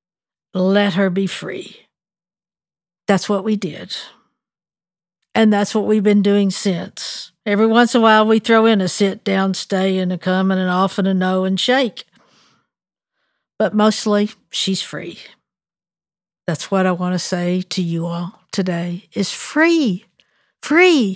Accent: American